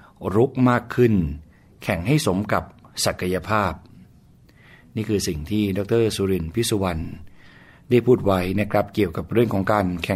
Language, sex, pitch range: Thai, male, 90-115 Hz